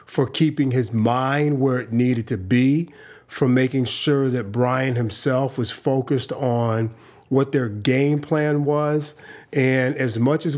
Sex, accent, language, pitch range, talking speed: male, American, English, 115-135 Hz, 155 wpm